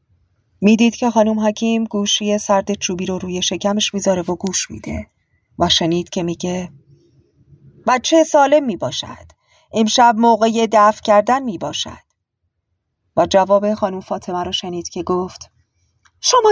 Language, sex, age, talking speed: Persian, female, 40-59, 130 wpm